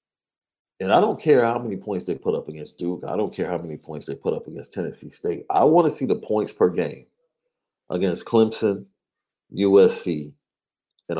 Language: English